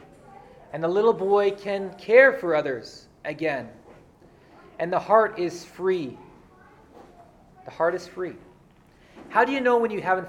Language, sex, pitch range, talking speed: English, male, 165-210 Hz, 145 wpm